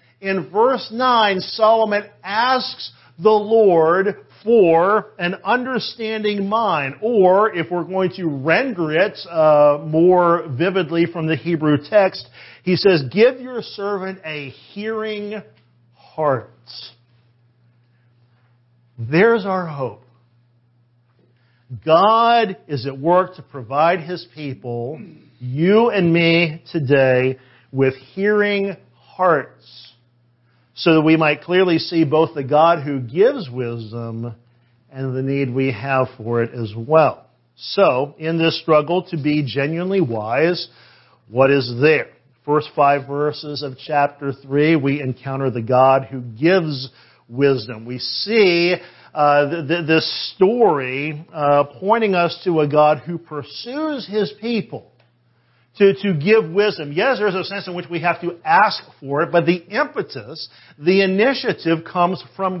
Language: English